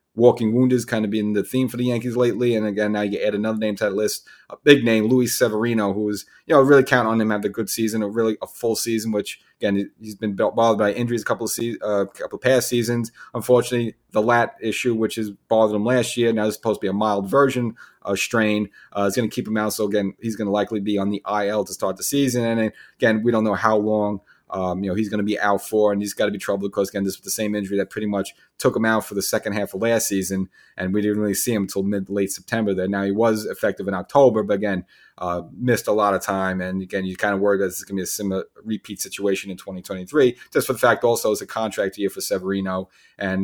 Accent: American